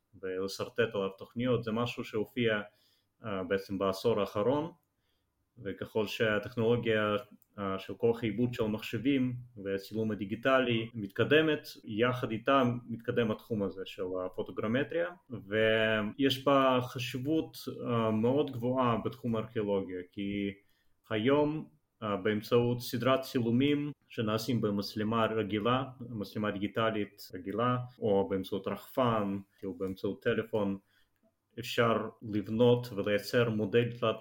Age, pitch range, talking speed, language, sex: 30-49, 100-125 Hz, 95 wpm, Hebrew, male